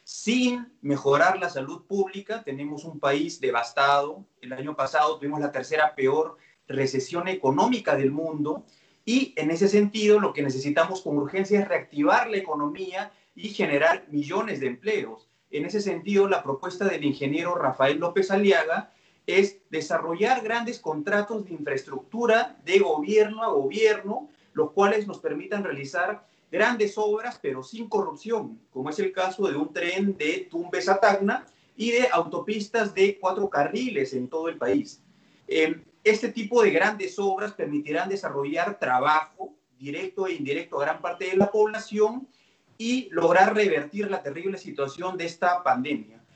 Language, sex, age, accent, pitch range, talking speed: Spanish, male, 40-59, Mexican, 155-215 Hz, 150 wpm